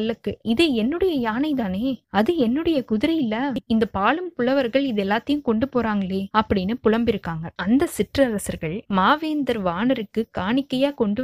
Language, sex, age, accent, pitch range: Tamil, female, 20-39, native, 200-265 Hz